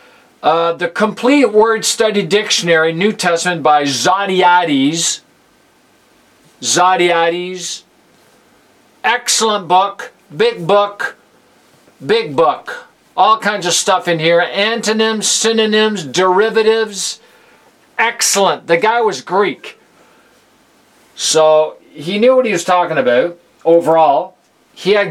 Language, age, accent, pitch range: English, 50-69, American, 165-220 Hz